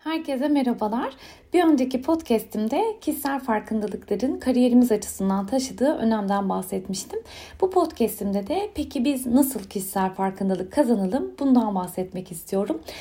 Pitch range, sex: 215-295 Hz, female